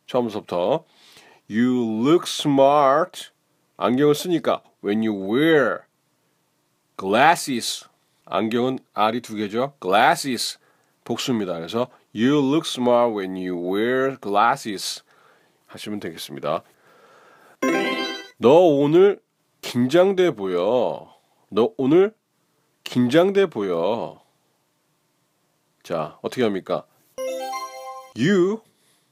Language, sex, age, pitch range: Korean, male, 30-49, 115-185 Hz